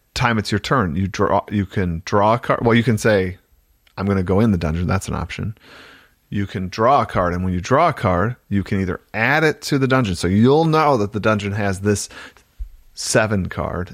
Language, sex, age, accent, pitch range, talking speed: English, male, 40-59, American, 100-130 Hz, 235 wpm